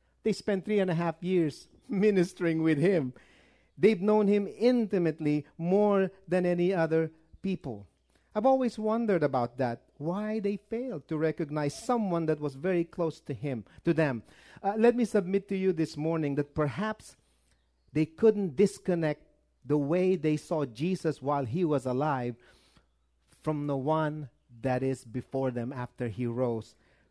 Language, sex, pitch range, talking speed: English, male, 135-195 Hz, 155 wpm